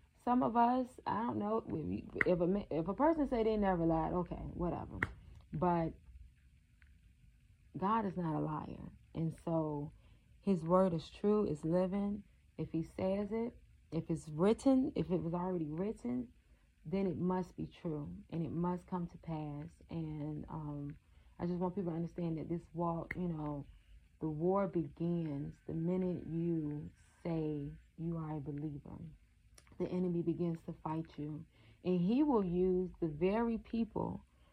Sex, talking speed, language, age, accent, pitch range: female, 160 wpm, English, 30-49, American, 155-200 Hz